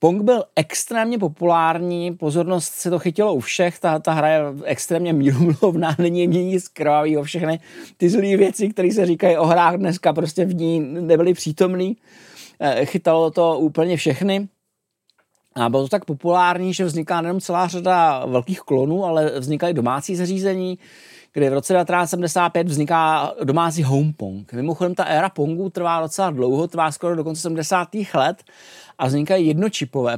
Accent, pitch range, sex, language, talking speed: native, 150-180 Hz, male, Czech, 155 wpm